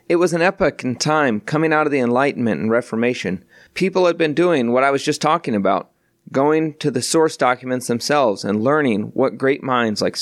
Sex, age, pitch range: male, 30-49, 115-155 Hz